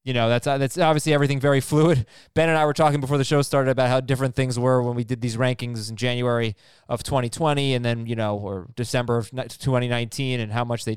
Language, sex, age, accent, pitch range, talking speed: English, male, 20-39, American, 125-160 Hz, 235 wpm